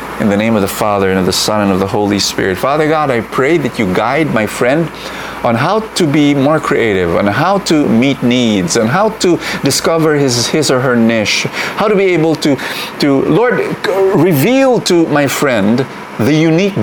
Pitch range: 100-145 Hz